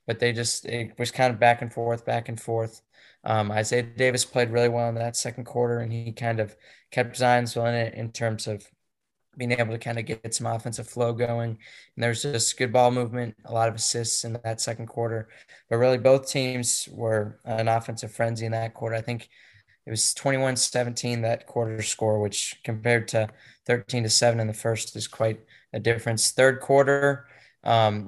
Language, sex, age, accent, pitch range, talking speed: English, male, 20-39, American, 115-125 Hz, 200 wpm